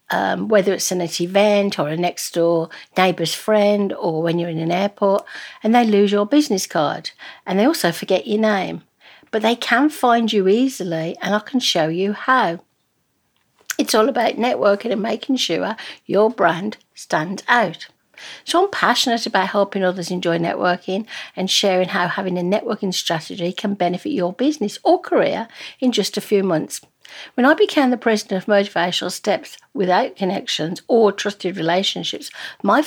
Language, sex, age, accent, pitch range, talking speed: English, female, 60-79, British, 180-230 Hz, 170 wpm